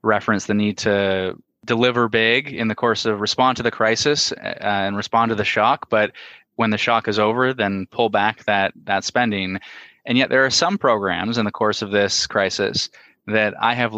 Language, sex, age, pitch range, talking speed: English, male, 20-39, 100-115 Hz, 200 wpm